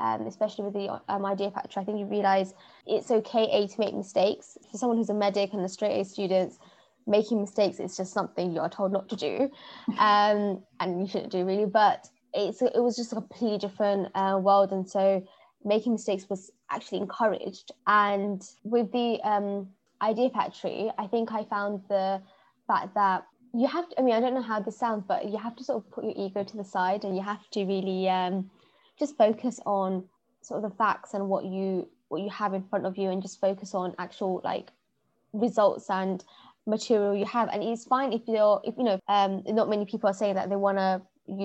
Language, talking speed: English, 215 wpm